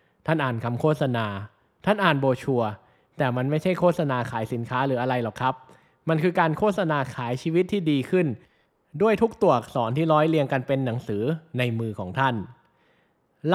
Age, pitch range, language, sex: 20-39, 125-165 Hz, Thai, male